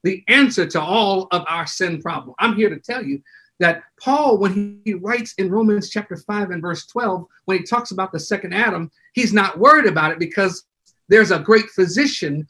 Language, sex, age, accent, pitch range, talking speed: English, male, 50-69, American, 190-255 Hz, 200 wpm